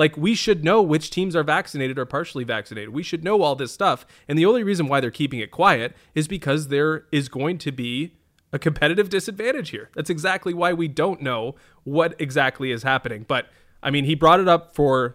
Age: 20-39